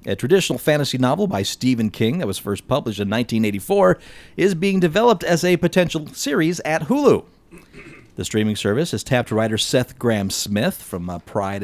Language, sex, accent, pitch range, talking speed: English, male, American, 105-155 Hz, 175 wpm